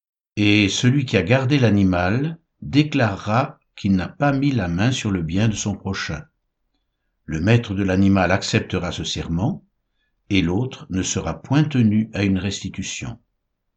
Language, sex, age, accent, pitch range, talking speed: French, male, 60-79, French, 95-135 Hz, 155 wpm